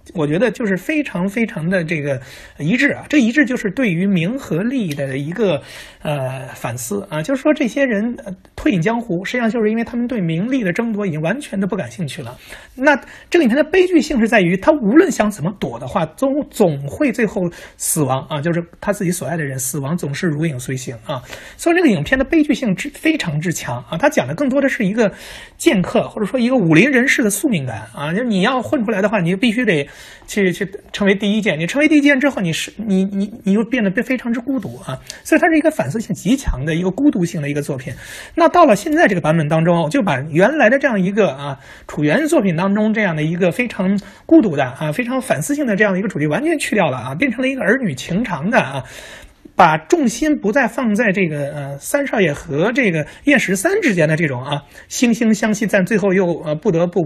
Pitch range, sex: 155-260 Hz, male